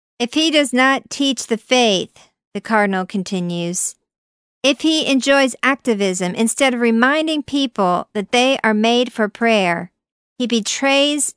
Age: 50-69